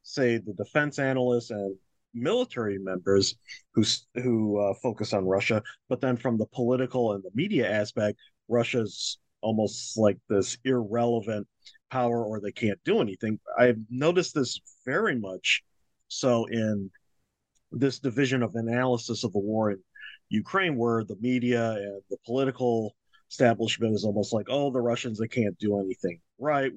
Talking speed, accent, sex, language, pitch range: 150 wpm, American, male, English, 105-125 Hz